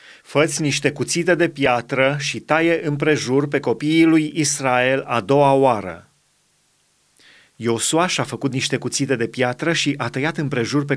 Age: 30-49